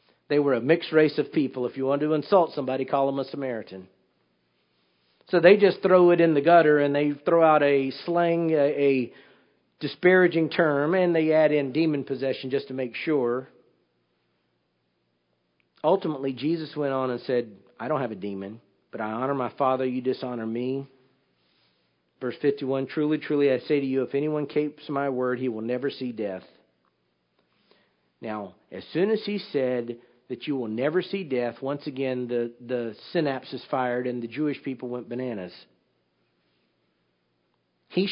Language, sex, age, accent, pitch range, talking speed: English, male, 50-69, American, 120-165 Hz, 170 wpm